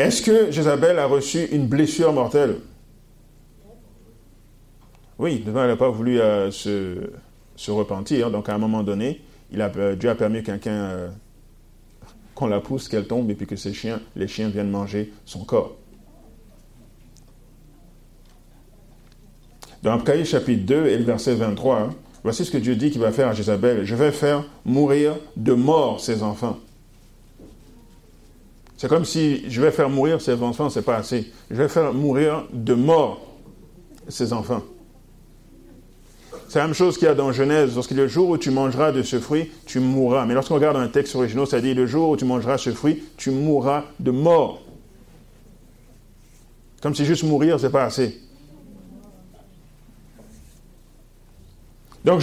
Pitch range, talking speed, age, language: 105-145 Hz, 170 wpm, 50-69, French